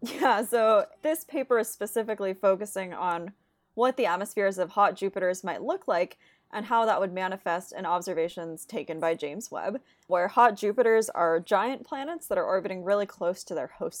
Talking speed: 180 wpm